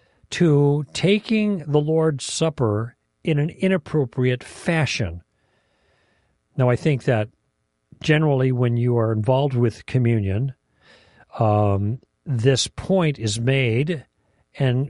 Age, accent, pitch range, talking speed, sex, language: 50-69, American, 110-140 Hz, 105 wpm, male, English